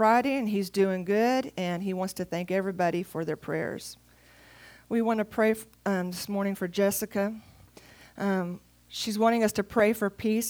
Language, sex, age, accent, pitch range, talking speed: English, female, 40-59, American, 185-220 Hz, 175 wpm